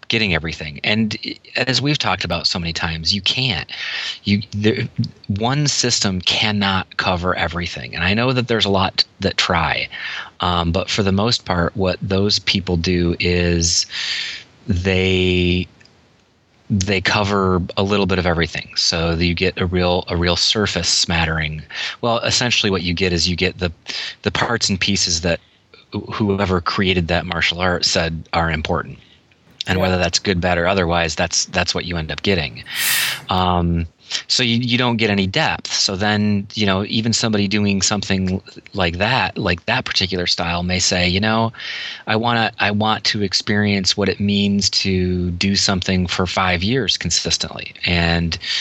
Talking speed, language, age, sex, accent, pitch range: 165 wpm, English, 30-49, male, American, 85-105 Hz